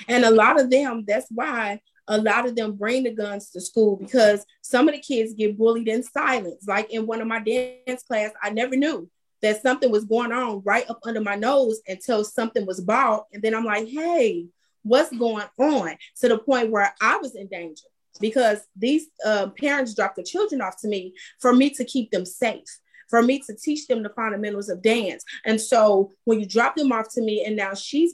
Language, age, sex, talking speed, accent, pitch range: English, 30-49, female, 220 wpm, American, 210-255 Hz